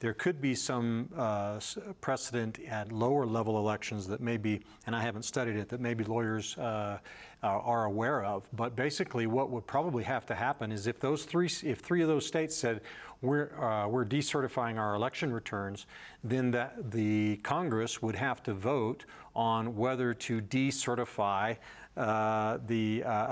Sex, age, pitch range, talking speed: male, 40-59, 110-130 Hz, 165 wpm